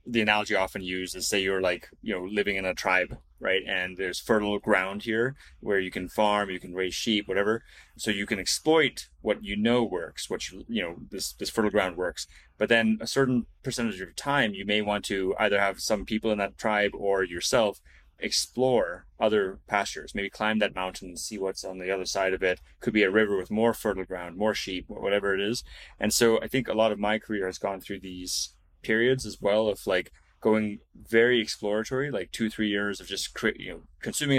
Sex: male